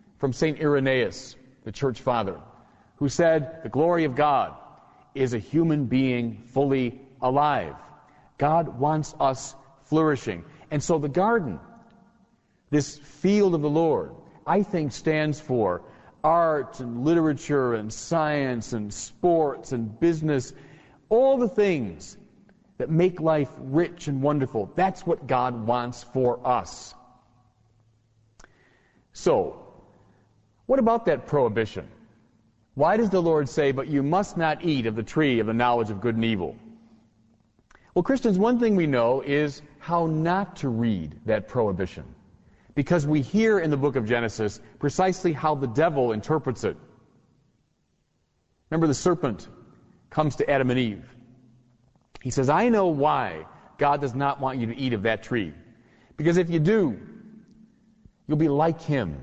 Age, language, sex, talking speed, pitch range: 40-59, English, male, 145 wpm, 120-165 Hz